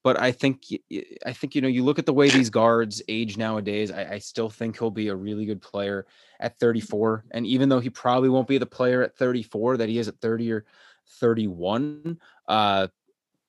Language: English